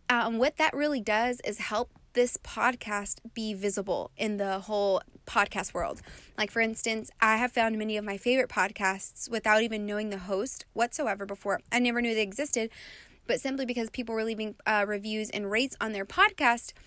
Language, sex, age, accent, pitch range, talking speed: English, female, 20-39, American, 215-250 Hz, 185 wpm